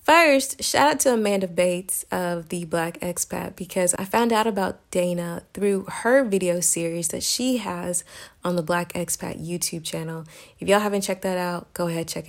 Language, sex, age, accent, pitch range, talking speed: English, female, 30-49, American, 175-220 Hz, 185 wpm